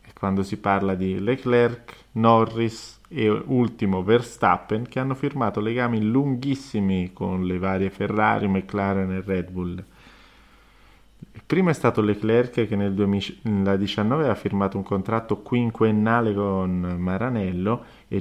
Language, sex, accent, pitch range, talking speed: Italian, male, native, 95-120 Hz, 125 wpm